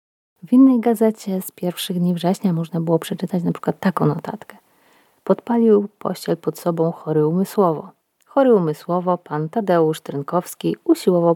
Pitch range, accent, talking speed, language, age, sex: 160-195 Hz, native, 135 wpm, Polish, 30-49, female